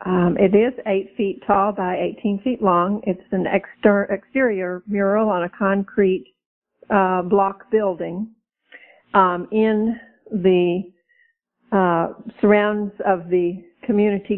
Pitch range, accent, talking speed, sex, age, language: 180-210 Hz, American, 120 wpm, female, 50-69, English